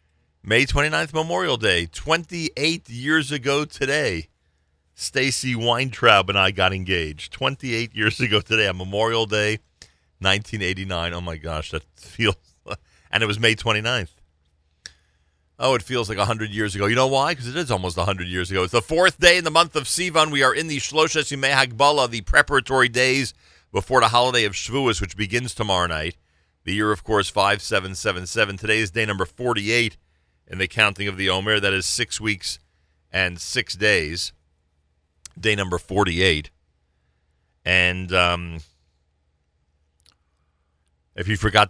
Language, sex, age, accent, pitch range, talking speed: English, male, 40-59, American, 85-120 Hz, 155 wpm